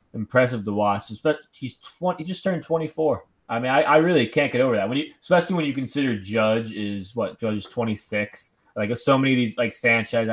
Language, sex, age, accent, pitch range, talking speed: English, male, 20-39, American, 110-140 Hz, 220 wpm